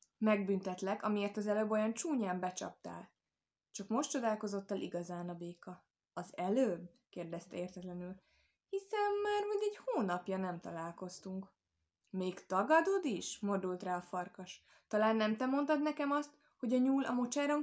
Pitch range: 185-265 Hz